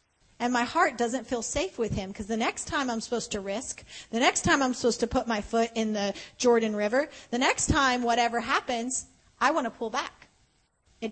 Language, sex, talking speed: English, female, 215 wpm